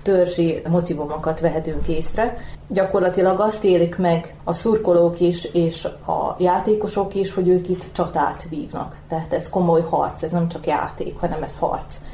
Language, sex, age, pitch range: Hungarian, female, 30-49, 165-190 Hz